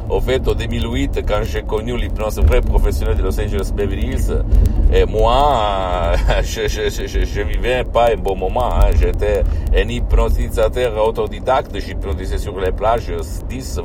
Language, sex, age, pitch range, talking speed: Italian, male, 60-79, 70-95 Hz, 115 wpm